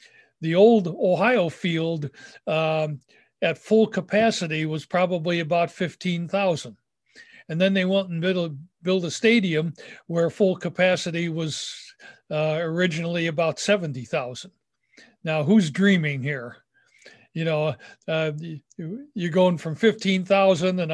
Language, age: English, 60-79